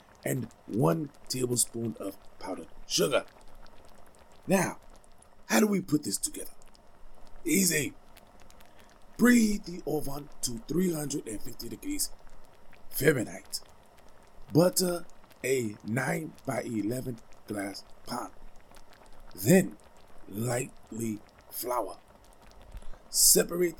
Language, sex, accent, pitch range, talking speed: English, male, American, 110-155 Hz, 80 wpm